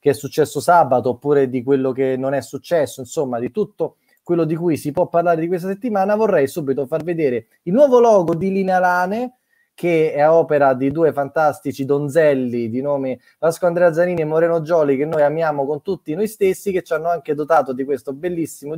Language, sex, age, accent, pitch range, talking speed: Italian, male, 20-39, native, 125-170 Hz, 200 wpm